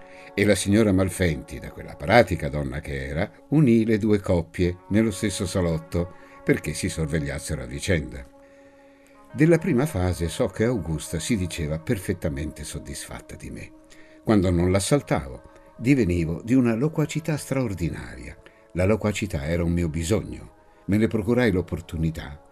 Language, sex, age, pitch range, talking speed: Italian, male, 60-79, 80-110 Hz, 140 wpm